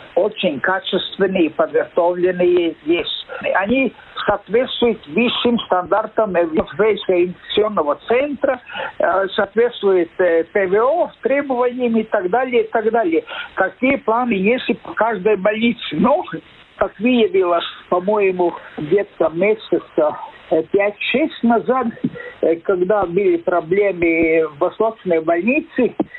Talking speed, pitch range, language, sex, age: 95 wpm, 195-275 Hz, Russian, male, 60-79